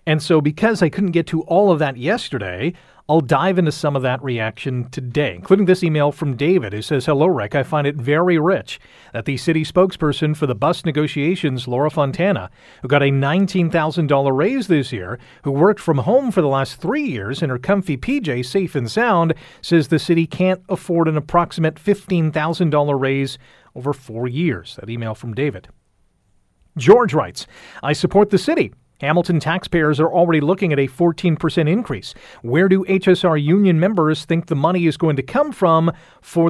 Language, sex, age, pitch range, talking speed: English, male, 40-59, 140-190 Hz, 185 wpm